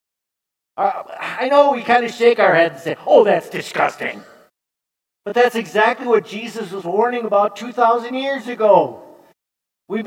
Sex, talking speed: male, 150 wpm